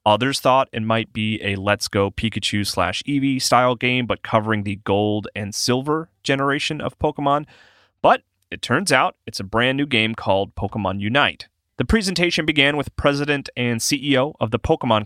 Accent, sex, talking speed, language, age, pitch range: American, male, 175 wpm, English, 30-49, 105-140 Hz